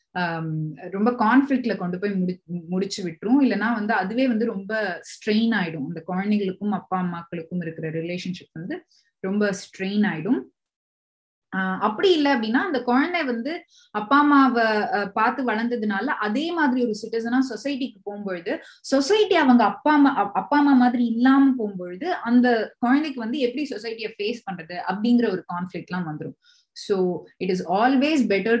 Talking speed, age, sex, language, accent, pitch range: 130 wpm, 20-39, female, Tamil, native, 185-250 Hz